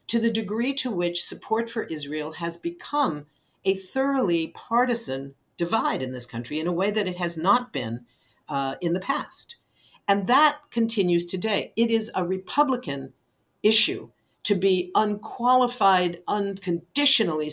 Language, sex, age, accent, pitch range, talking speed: English, female, 50-69, American, 150-220 Hz, 145 wpm